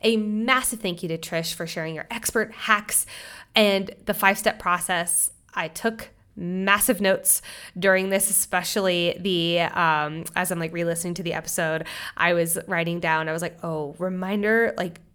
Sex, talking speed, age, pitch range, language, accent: female, 160 wpm, 20-39, 185-245 Hz, English, American